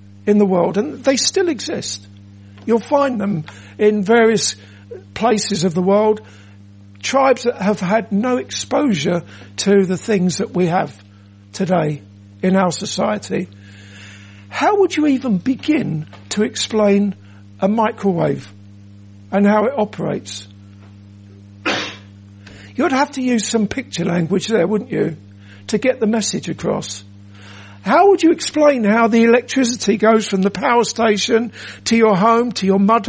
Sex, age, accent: male, 60-79, British